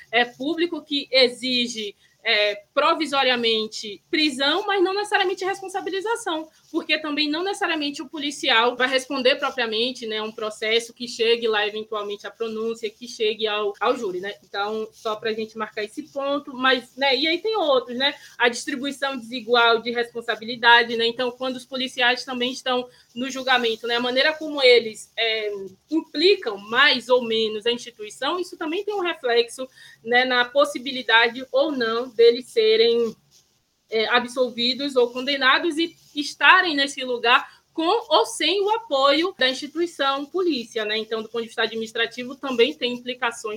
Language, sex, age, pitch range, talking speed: Portuguese, female, 20-39, 225-285 Hz, 160 wpm